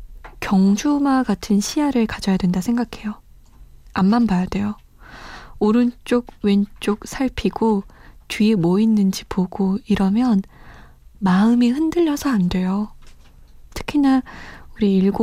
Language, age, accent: Korean, 20-39, native